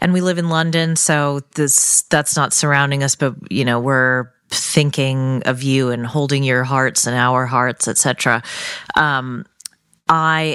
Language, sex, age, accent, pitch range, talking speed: English, female, 30-49, American, 135-170 Hz, 160 wpm